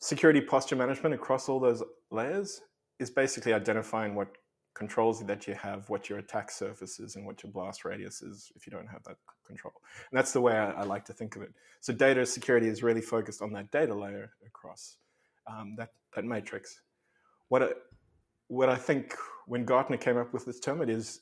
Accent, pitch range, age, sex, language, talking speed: Australian, 105-125 Hz, 20-39, male, English, 200 wpm